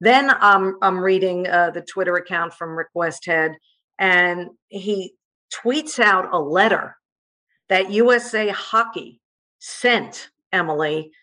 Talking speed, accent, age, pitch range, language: 120 wpm, American, 50-69, 185-235 Hz, English